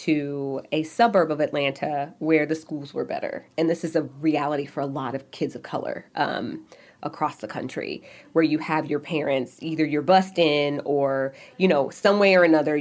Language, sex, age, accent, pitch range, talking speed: English, female, 20-39, American, 150-180 Hz, 195 wpm